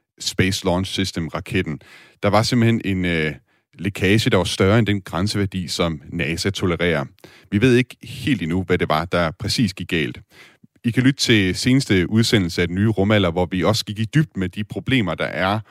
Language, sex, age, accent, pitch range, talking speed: Danish, male, 30-49, native, 90-115 Hz, 195 wpm